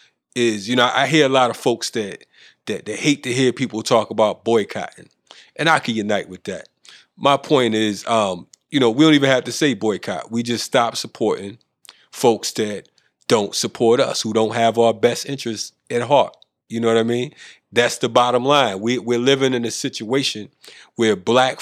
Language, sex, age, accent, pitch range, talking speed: English, male, 30-49, American, 115-130 Hz, 200 wpm